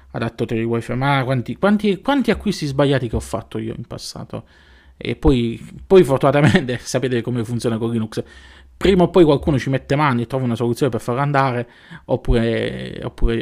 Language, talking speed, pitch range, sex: Italian, 170 wpm, 110-140 Hz, male